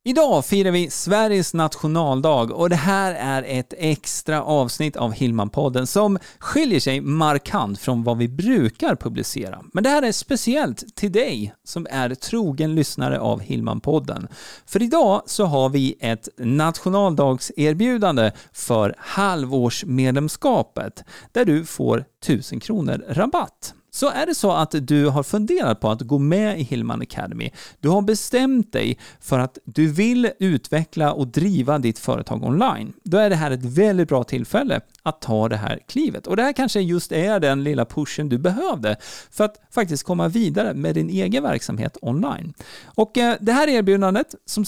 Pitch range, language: 130-200 Hz, Swedish